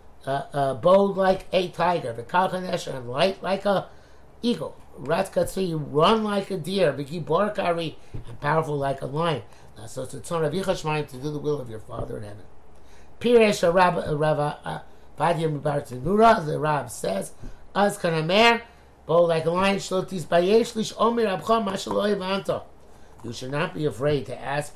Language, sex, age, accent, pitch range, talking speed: English, male, 50-69, American, 135-190 Hz, 160 wpm